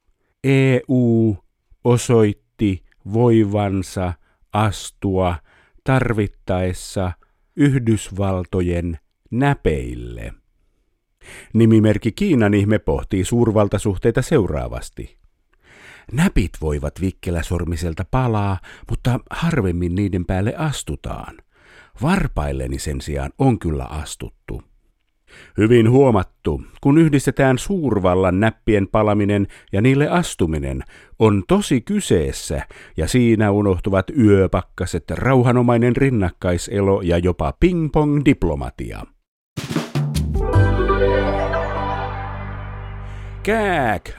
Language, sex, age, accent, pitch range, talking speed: Finnish, male, 50-69, native, 90-120 Hz, 70 wpm